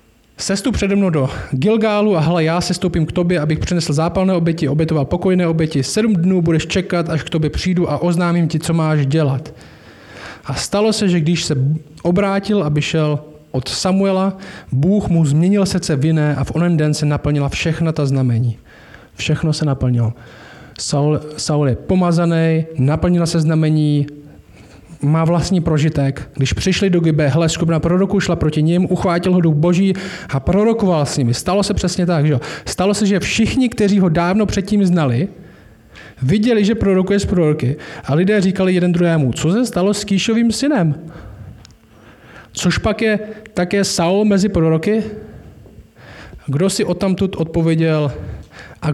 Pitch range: 150-190 Hz